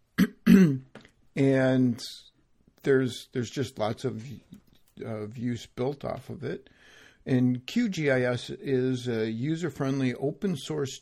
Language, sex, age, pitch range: English, male, 50-69, 115-135 Hz